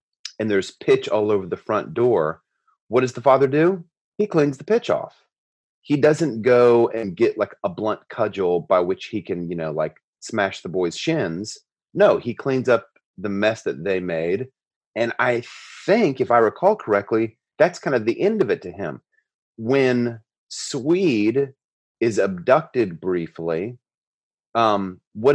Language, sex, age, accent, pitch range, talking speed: English, male, 30-49, American, 100-140 Hz, 165 wpm